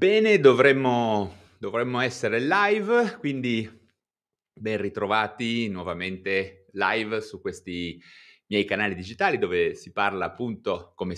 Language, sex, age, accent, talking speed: Italian, male, 30-49, native, 105 wpm